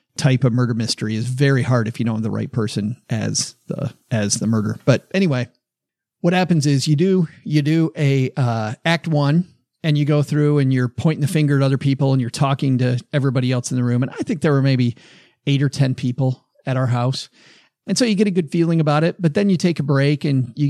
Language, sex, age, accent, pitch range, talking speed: English, male, 40-59, American, 130-165 Hz, 240 wpm